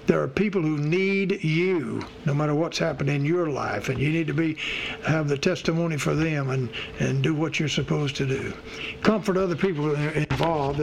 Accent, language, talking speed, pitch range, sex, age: American, English, 195 wpm, 150-190 Hz, male, 60-79